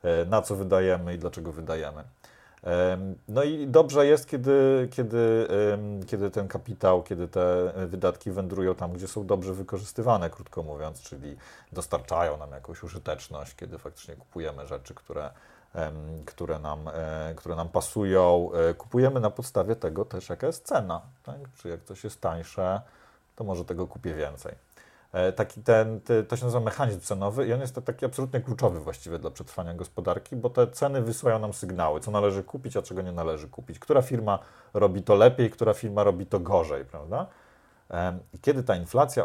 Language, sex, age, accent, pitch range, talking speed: Polish, male, 40-59, native, 90-120 Hz, 155 wpm